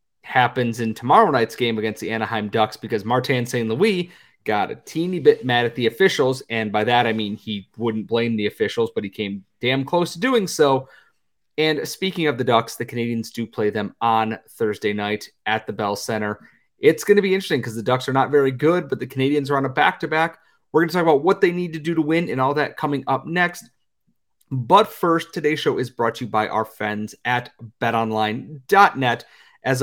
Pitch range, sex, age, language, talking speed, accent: 115-150 Hz, male, 30-49, English, 215 wpm, American